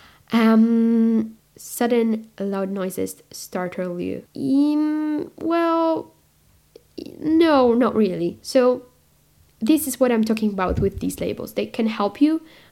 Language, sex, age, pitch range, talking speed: English, female, 10-29, 195-235 Hz, 120 wpm